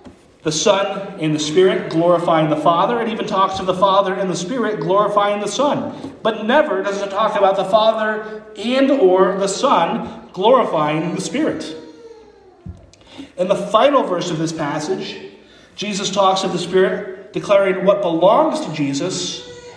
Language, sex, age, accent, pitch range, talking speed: English, male, 40-59, American, 185-230 Hz, 160 wpm